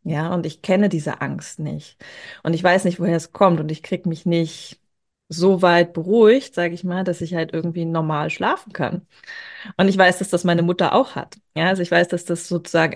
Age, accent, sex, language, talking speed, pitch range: 20-39, German, female, German, 220 wpm, 165-195 Hz